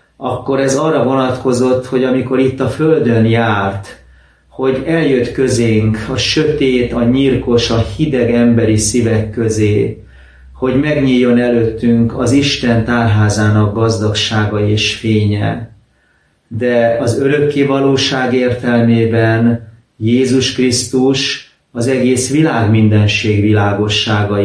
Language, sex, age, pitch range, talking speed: Hungarian, male, 30-49, 105-125 Hz, 105 wpm